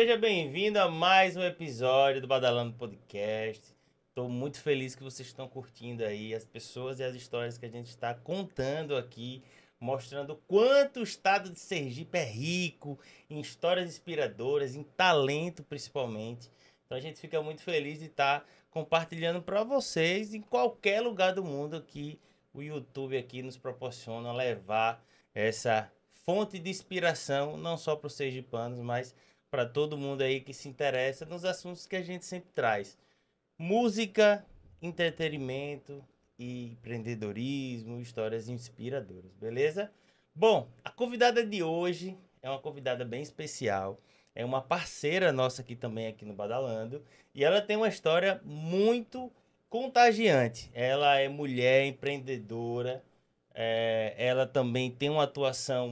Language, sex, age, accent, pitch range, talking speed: Portuguese, male, 20-39, Brazilian, 125-175 Hz, 140 wpm